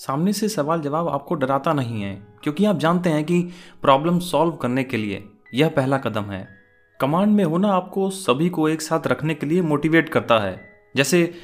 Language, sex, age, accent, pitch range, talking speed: Hindi, male, 30-49, native, 120-170 Hz, 195 wpm